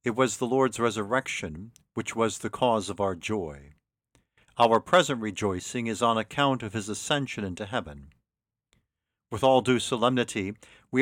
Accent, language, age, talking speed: American, English, 50-69, 150 wpm